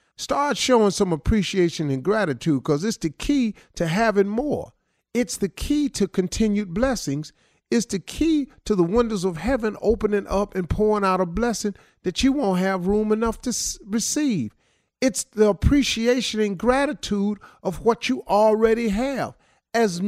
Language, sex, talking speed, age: English, male, 160 wpm, 50-69